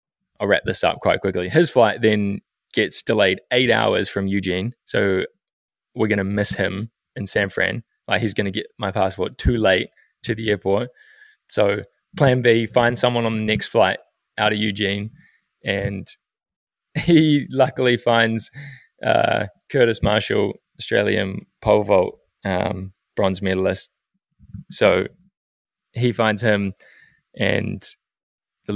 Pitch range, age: 95-120 Hz, 20-39